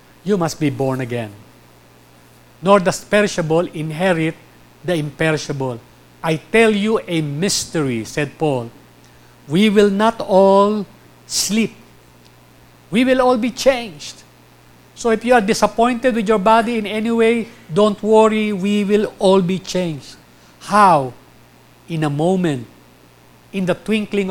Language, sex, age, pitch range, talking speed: English, male, 50-69, 130-200 Hz, 130 wpm